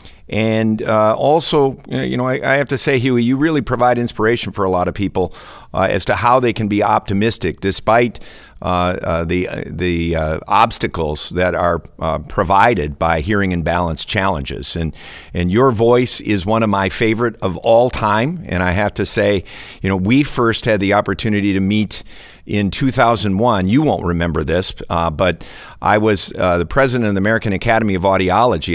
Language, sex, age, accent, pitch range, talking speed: English, male, 50-69, American, 85-110 Hz, 190 wpm